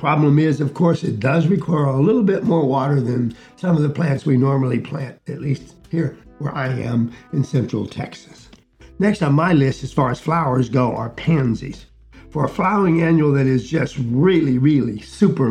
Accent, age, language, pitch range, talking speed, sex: American, 60-79, English, 130-165 Hz, 195 wpm, male